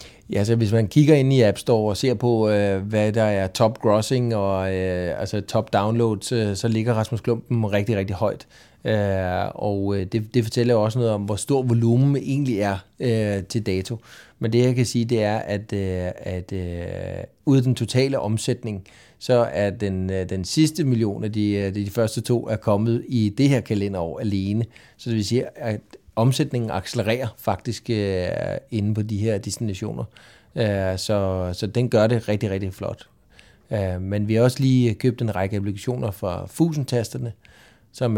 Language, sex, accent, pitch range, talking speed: Danish, male, native, 100-120 Hz, 165 wpm